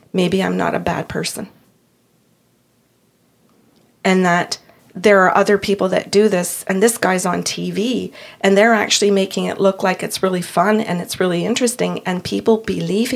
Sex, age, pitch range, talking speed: female, 40-59, 175-205 Hz, 170 wpm